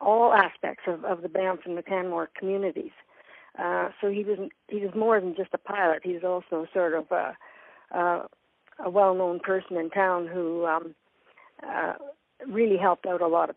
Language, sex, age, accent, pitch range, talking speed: English, female, 60-79, American, 170-195 Hz, 190 wpm